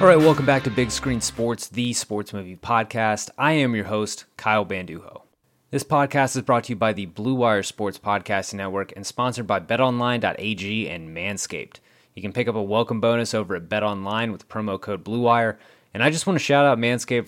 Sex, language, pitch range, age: male, English, 105-125 Hz, 30-49